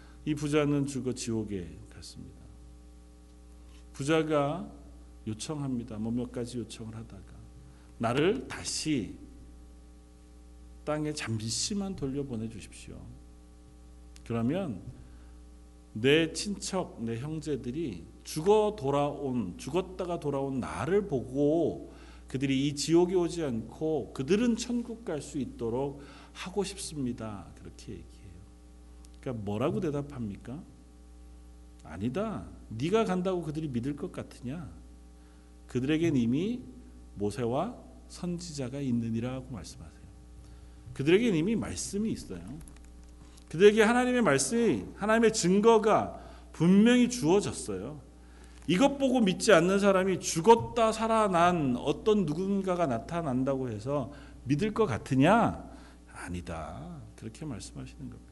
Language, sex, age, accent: Korean, male, 40-59, native